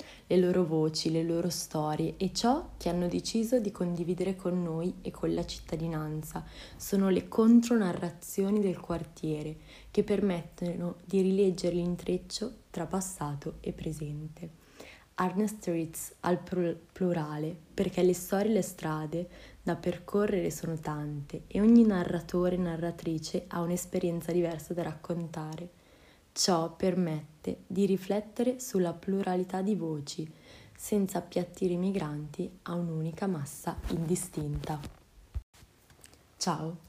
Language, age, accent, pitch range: Italian, 20-39, native, 165-190 Hz